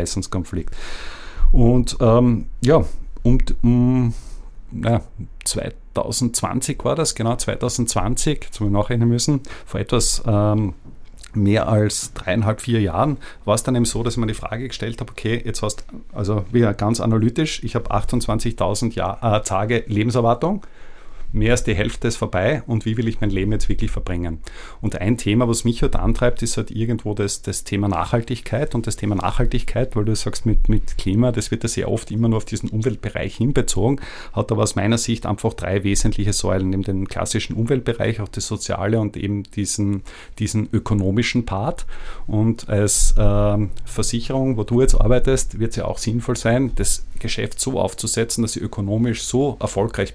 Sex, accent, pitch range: male, Austrian, 105-120 Hz